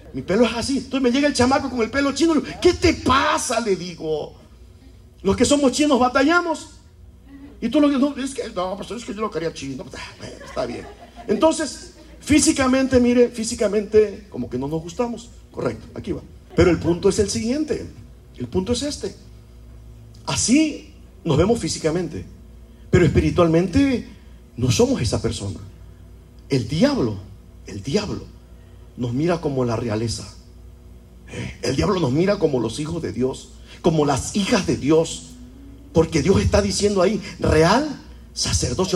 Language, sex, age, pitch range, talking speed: Spanish, male, 50-69, 155-240 Hz, 150 wpm